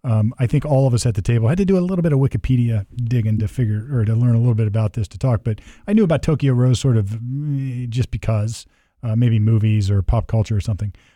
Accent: American